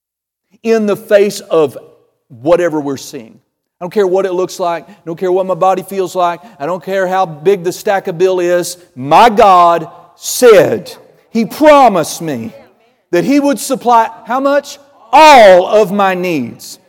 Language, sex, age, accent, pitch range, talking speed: English, male, 50-69, American, 180-265 Hz, 170 wpm